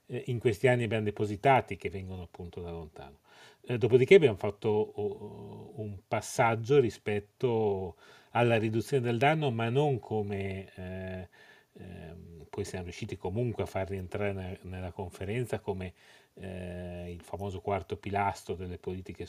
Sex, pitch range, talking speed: male, 90-110 Hz, 130 wpm